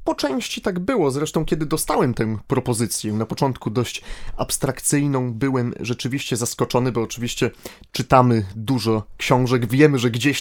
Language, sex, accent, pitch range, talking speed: Polish, male, native, 120-150 Hz, 140 wpm